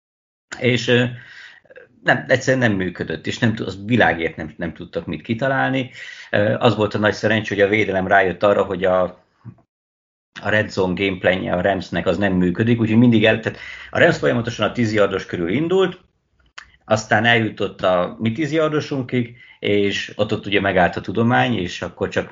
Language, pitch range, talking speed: Hungarian, 90-115 Hz, 160 wpm